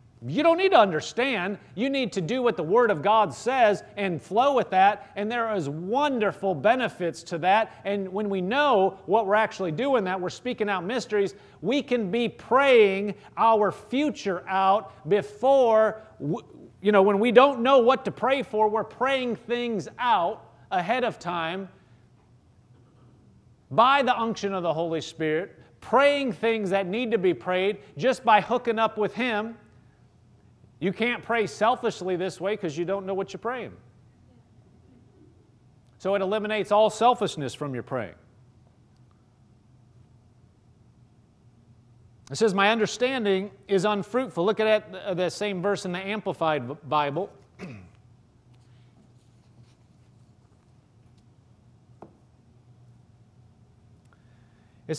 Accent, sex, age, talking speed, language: American, male, 40-59, 130 wpm, English